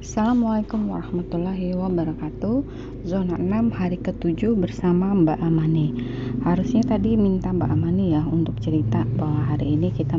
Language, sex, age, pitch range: Indonesian, female, 30-49, 155-195 Hz